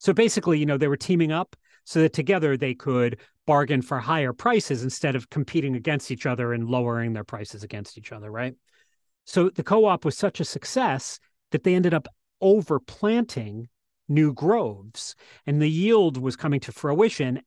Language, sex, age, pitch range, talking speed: English, male, 40-59, 125-160 Hz, 180 wpm